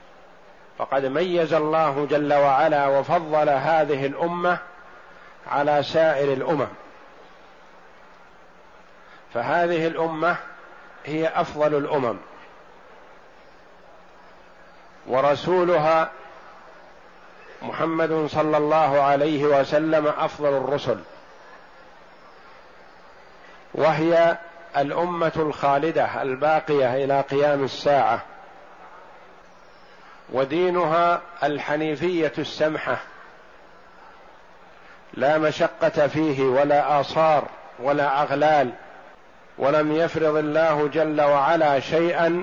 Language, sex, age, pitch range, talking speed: Arabic, male, 50-69, 140-165 Hz, 65 wpm